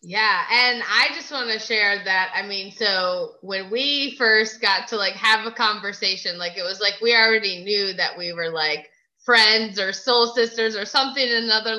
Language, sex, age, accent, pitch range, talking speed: English, female, 20-39, American, 210-265 Hz, 200 wpm